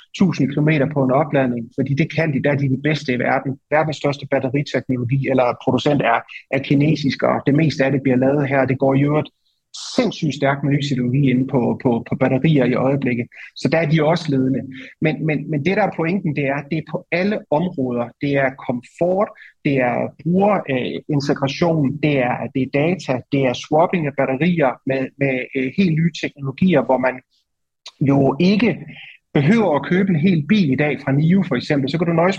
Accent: native